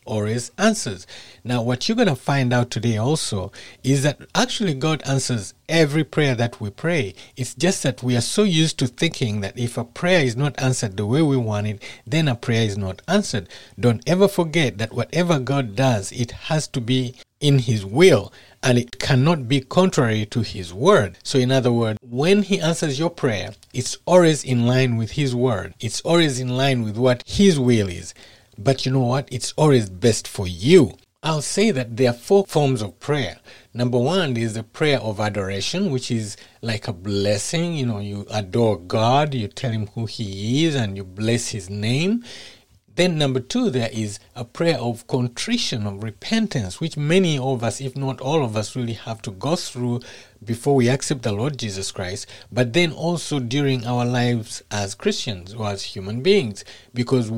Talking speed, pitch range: 195 wpm, 110-150 Hz